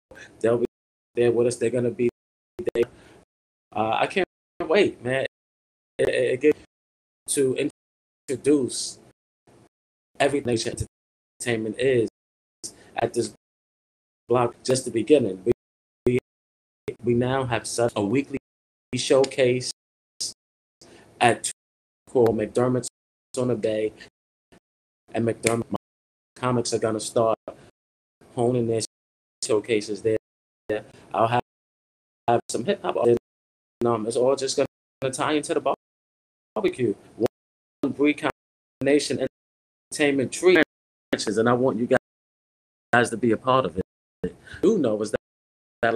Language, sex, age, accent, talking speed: English, male, 20-39, American, 125 wpm